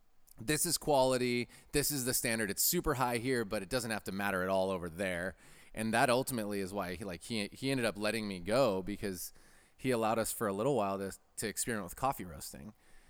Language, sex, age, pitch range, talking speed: English, male, 30-49, 95-115 Hz, 225 wpm